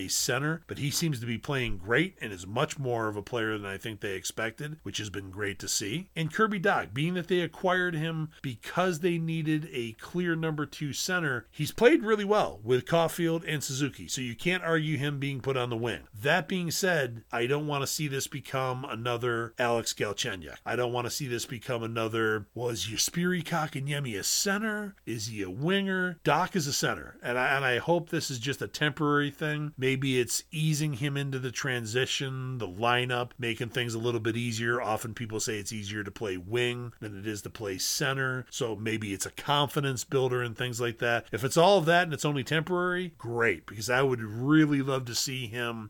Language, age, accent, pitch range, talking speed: English, 40-59, American, 120-155 Hz, 215 wpm